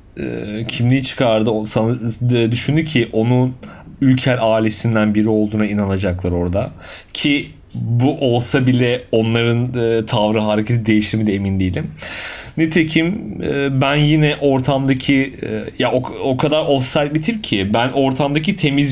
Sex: male